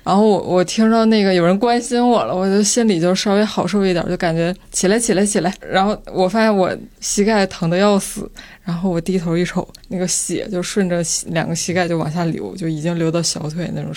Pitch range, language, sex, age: 175-215 Hz, Chinese, female, 20-39